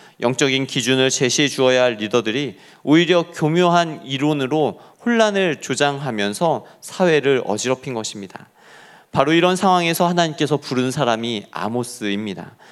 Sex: male